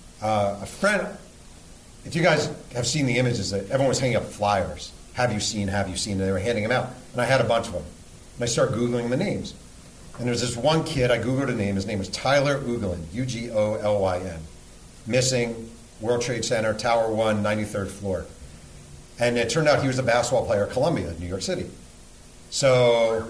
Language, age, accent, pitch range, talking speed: English, 40-59, American, 95-120 Hz, 200 wpm